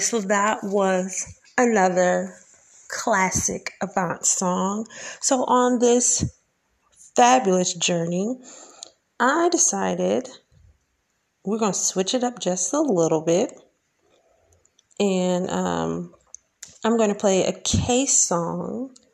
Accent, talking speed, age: American, 105 wpm, 30-49